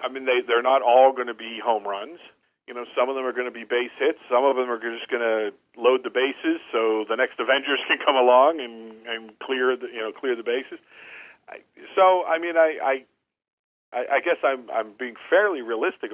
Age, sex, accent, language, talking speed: 50-69, male, American, English, 225 wpm